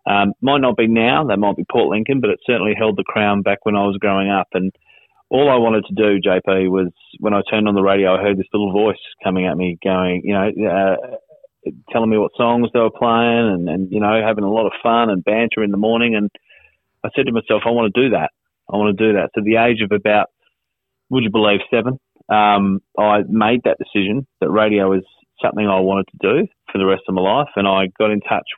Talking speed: 250 wpm